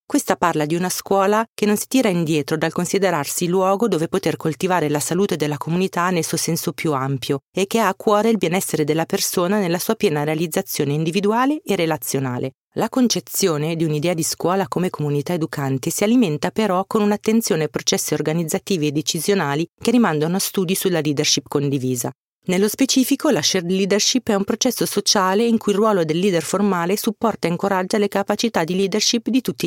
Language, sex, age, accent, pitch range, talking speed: Italian, female, 40-59, native, 155-205 Hz, 185 wpm